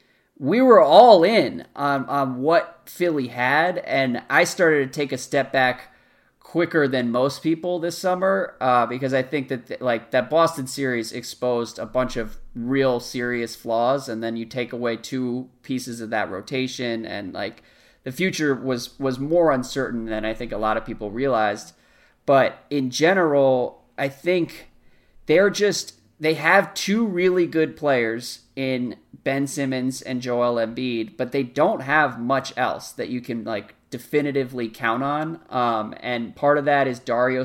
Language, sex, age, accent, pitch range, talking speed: English, male, 30-49, American, 120-140 Hz, 165 wpm